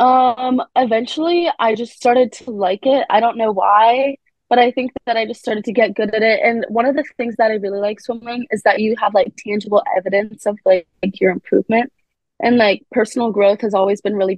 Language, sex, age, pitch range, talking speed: English, female, 20-39, 195-230 Hz, 225 wpm